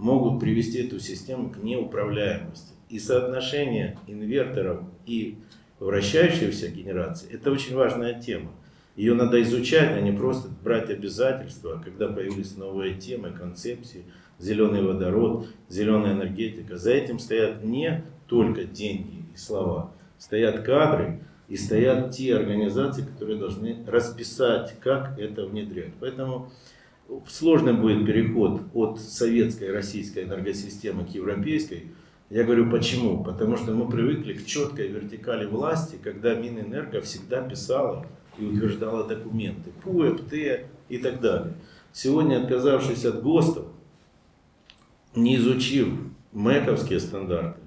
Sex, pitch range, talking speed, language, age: male, 105-130 Hz, 120 wpm, Ukrainian, 50-69